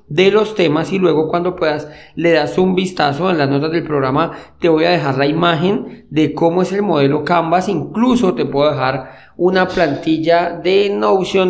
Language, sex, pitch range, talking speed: Spanish, male, 140-185 Hz, 190 wpm